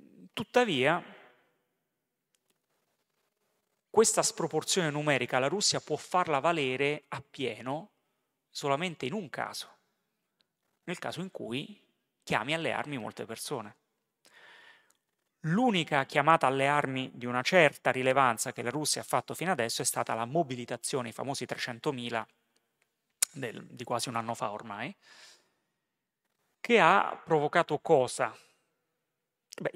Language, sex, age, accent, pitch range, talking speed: Italian, male, 30-49, native, 120-155 Hz, 115 wpm